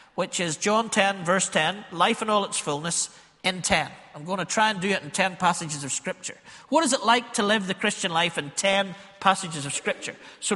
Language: English